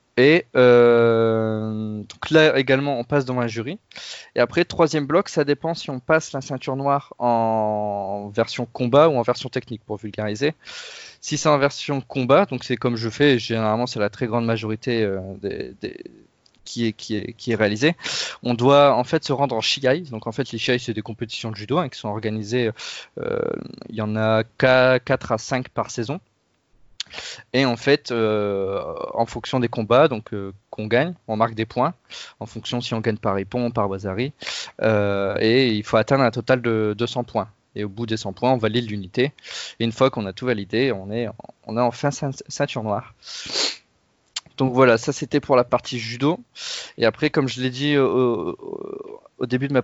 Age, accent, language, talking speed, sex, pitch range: 20-39, French, French, 195 wpm, male, 110-140 Hz